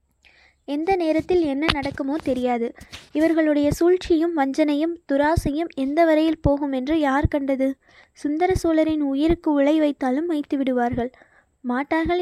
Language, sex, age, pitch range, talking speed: Tamil, female, 20-39, 270-320 Hz, 105 wpm